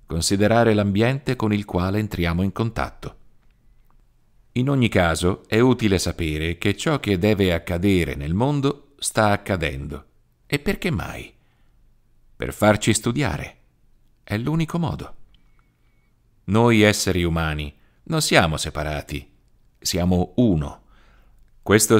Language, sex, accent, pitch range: Italian, male, native, 80-110 Hz